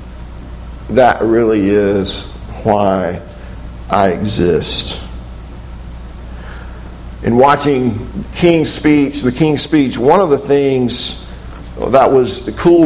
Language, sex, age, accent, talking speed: English, male, 50-69, American, 95 wpm